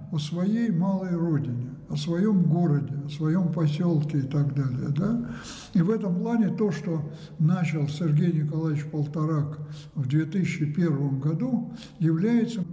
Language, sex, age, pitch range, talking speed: Russian, male, 60-79, 150-185 Hz, 125 wpm